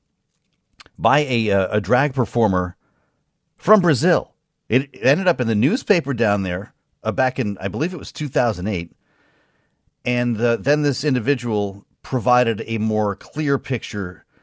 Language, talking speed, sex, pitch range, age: English, 135 wpm, male, 100-140 Hz, 40-59